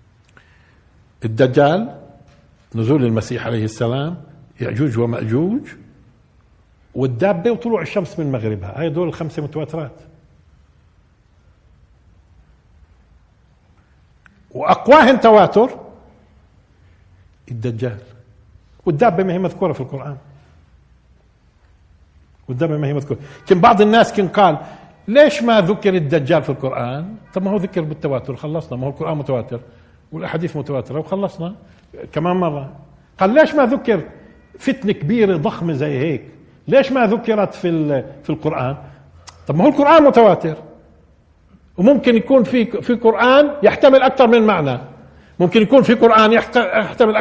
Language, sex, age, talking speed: Arabic, male, 50-69, 115 wpm